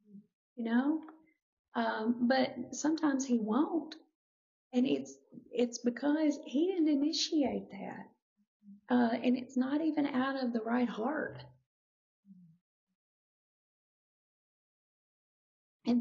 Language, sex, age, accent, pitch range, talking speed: English, female, 40-59, American, 180-245 Hz, 95 wpm